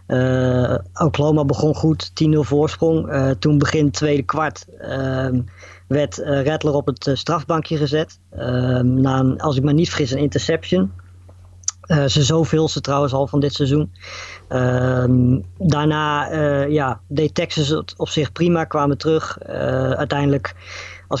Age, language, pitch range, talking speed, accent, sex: 20-39, Dutch, 130-150 Hz, 155 wpm, Dutch, female